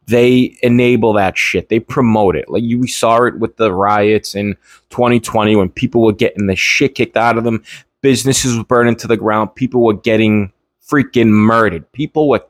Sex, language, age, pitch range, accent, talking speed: male, English, 20-39, 110-130 Hz, American, 190 wpm